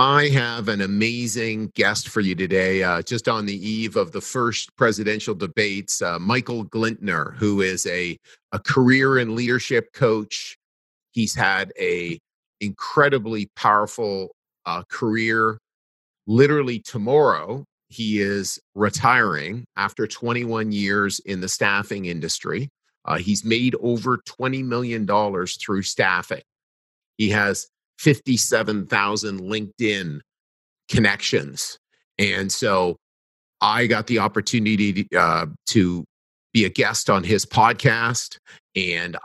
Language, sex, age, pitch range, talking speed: English, male, 40-59, 100-120 Hz, 120 wpm